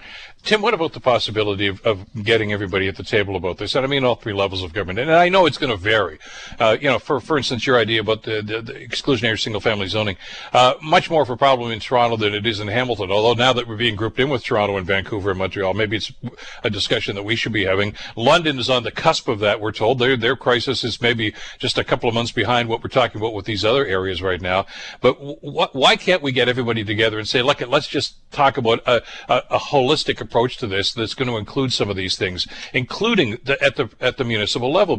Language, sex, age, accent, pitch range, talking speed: English, male, 60-79, American, 105-130 Hz, 250 wpm